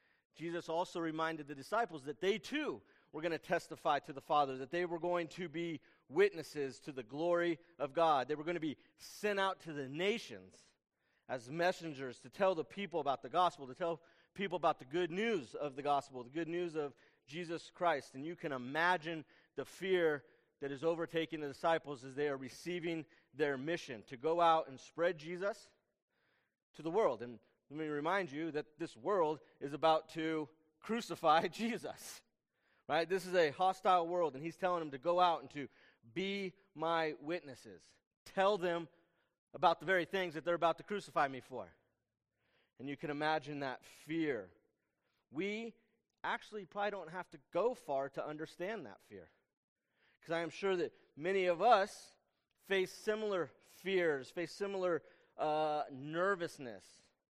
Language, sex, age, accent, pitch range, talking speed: English, male, 40-59, American, 145-180 Hz, 175 wpm